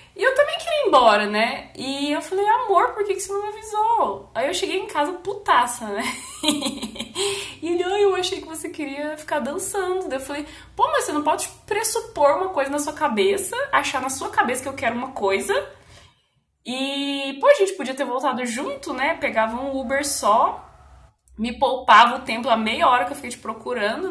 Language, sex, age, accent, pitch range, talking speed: Portuguese, female, 20-39, Brazilian, 230-325 Hz, 205 wpm